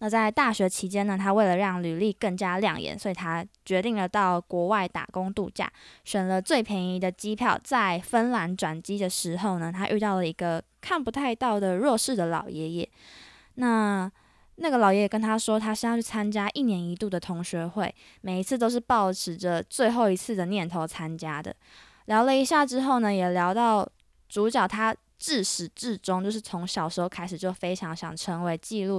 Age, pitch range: 10-29, 180-225 Hz